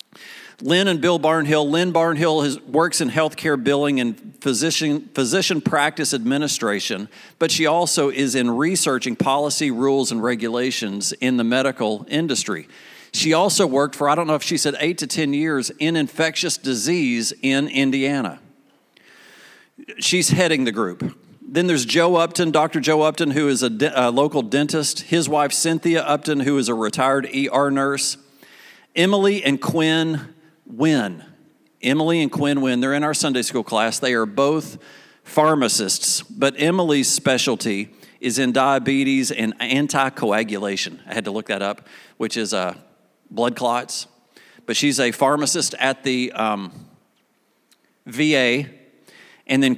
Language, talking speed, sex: English, 145 wpm, male